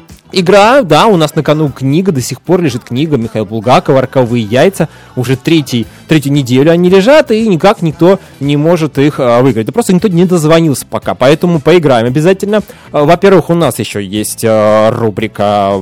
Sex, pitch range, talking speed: male, 120-175 Hz, 165 wpm